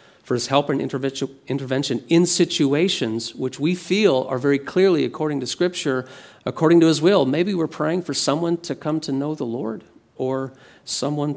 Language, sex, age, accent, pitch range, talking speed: English, male, 40-59, American, 125-160 Hz, 175 wpm